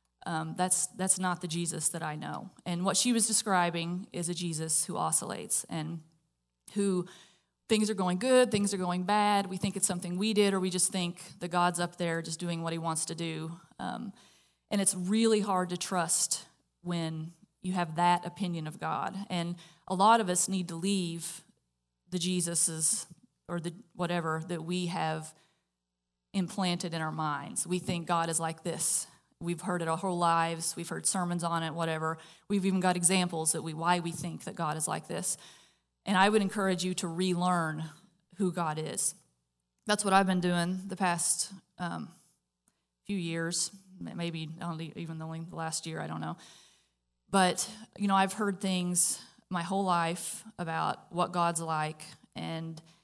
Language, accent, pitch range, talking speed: English, American, 165-190 Hz, 180 wpm